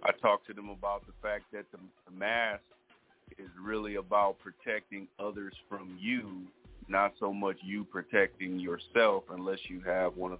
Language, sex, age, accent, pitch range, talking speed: English, male, 40-59, American, 95-105 Hz, 165 wpm